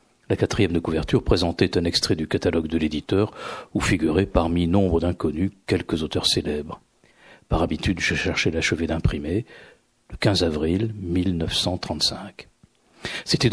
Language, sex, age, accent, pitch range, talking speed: French, male, 50-69, French, 85-105 Hz, 135 wpm